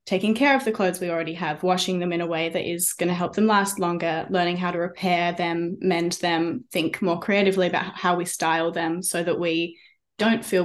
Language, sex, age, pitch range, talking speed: English, female, 10-29, 170-195 Hz, 230 wpm